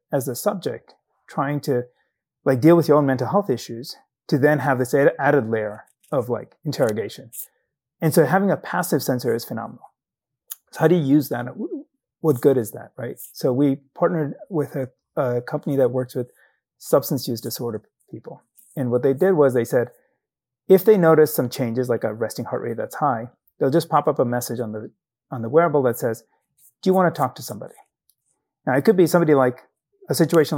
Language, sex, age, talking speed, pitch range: English, male, 30-49, 200 wpm, 125-165 Hz